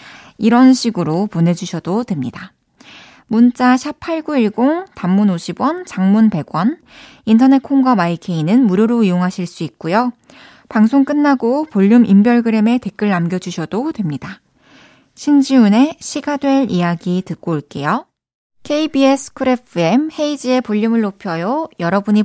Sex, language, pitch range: female, Korean, 190-270 Hz